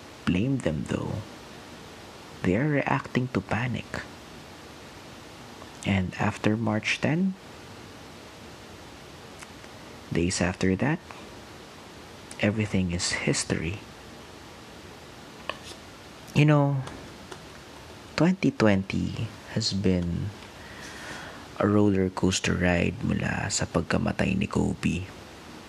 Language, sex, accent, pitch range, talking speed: Filipino, male, native, 90-105 Hz, 75 wpm